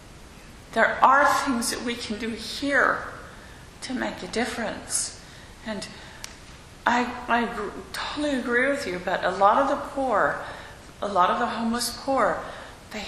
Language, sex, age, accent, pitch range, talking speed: English, female, 40-59, American, 190-245 Hz, 145 wpm